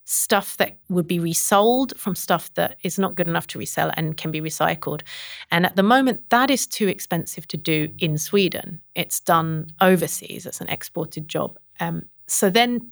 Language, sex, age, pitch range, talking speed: Swedish, female, 30-49, 165-205 Hz, 185 wpm